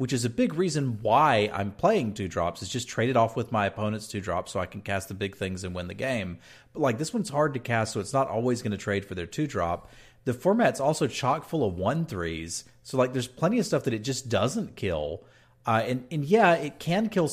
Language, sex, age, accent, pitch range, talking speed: English, male, 40-59, American, 105-140 Hz, 255 wpm